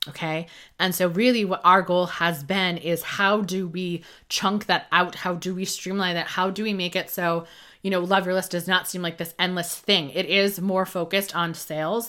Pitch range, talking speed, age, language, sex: 175-205 Hz, 225 wpm, 20-39, English, female